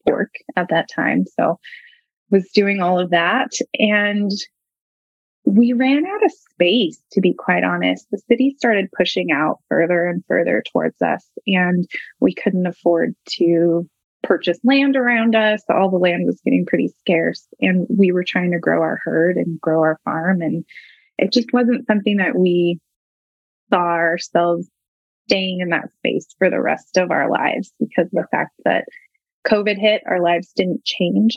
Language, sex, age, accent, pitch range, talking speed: English, female, 20-39, American, 175-235 Hz, 170 wpm